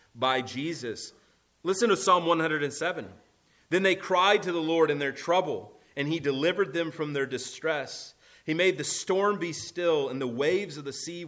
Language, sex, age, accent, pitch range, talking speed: English, male, 30-49, American, 125-160 Hz, 180 wpm